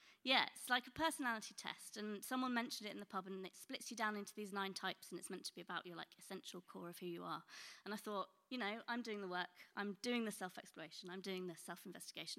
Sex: female